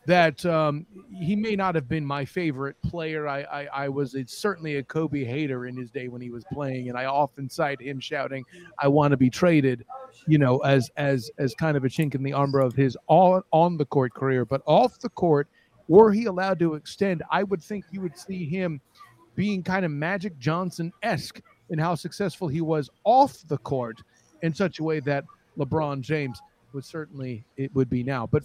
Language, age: English, 40-59